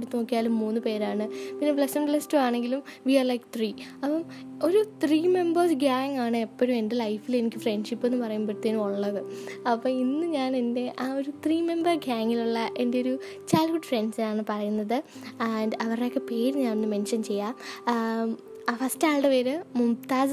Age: 20-39